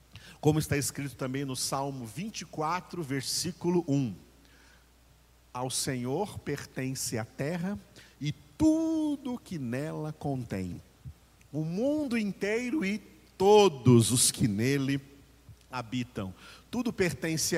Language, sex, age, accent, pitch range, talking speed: Portuguese, male, 50-69, Brazilian, 120-175 Hz, 100 wpm